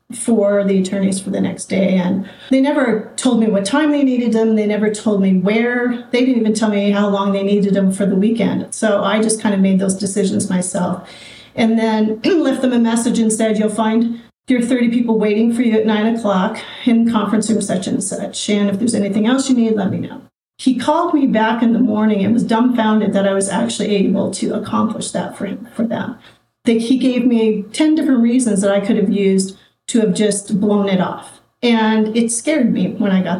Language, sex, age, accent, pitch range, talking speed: English, female, 40-59, American, 200-235 Hz, 225 wpm